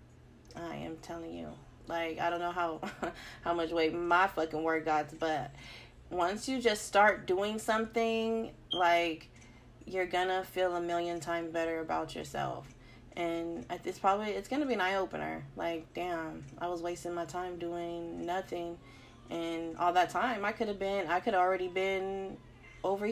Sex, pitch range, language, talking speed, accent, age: female, 165-225 Hz, English, 165 wpm, American, 20-39